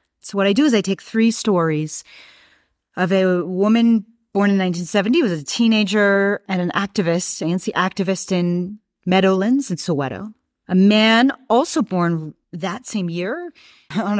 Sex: female